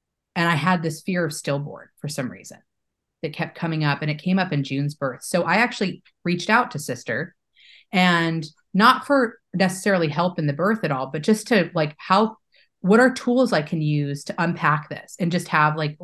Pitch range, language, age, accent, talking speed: 150-185 Hz, English, 30-49, American, 210 wpm